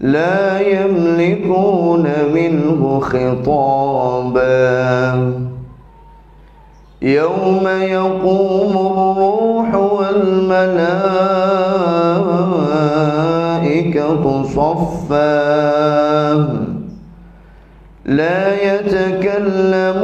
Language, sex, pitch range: Indonesian, male, 140-185 Hz